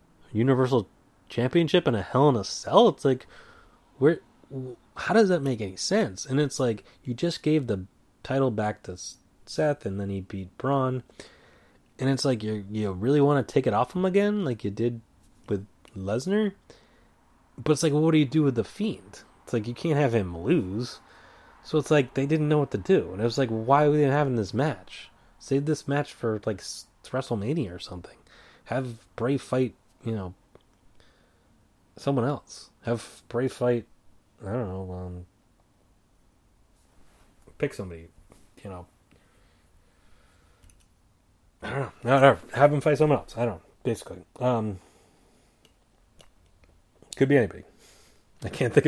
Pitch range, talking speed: 100-140 Hz, 165 wpm